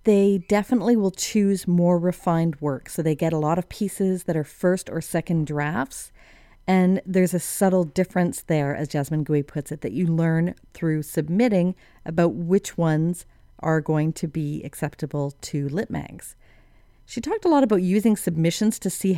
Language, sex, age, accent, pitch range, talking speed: English, female, 40-59, American, 150-185 Hz, 175 wpm